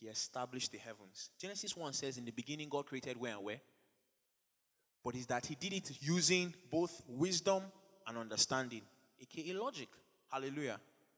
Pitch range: 115-165 Hz